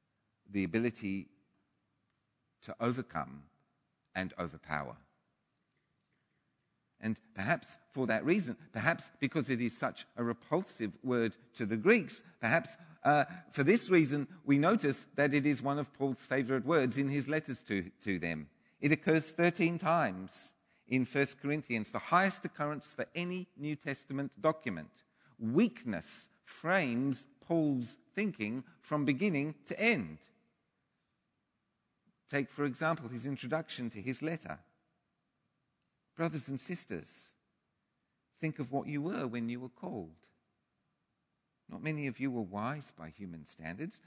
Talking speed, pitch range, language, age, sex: 130 wpm, 115-160 Hz, English, 50-69, male